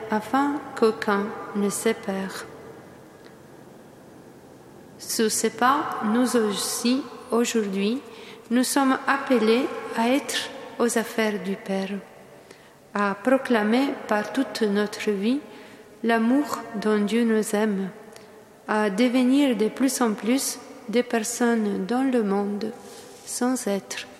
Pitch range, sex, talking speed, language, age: 210-245 Hz, female, 105 wpm, French, 40-59